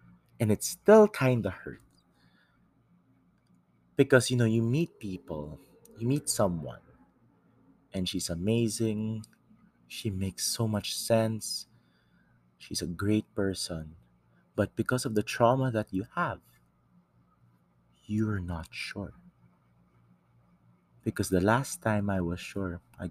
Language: English